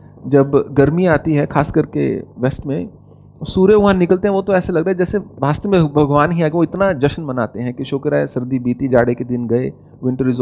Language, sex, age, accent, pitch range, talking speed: English, male, 30-49, Indian, 130-155 Hz, 230 wpm